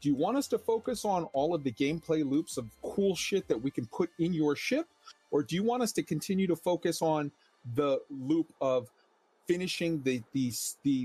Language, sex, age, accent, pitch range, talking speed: English, male, 40-59, American, 130-200 Hz, 210 wpm